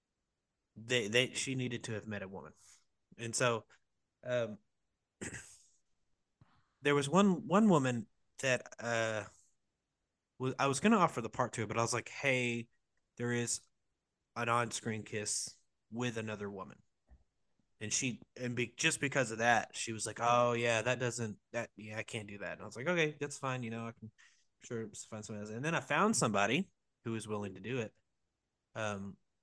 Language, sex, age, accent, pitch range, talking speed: English, male, 30-49, American, 110-130 Hz, 185 wpm